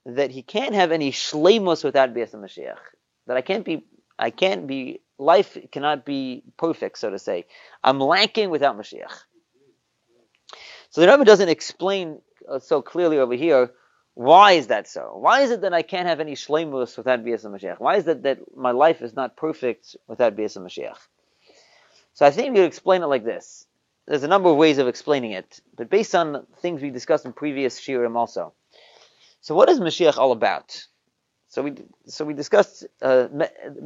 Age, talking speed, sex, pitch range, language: 30-49, 185 wpm, male, 130-180 Hz, English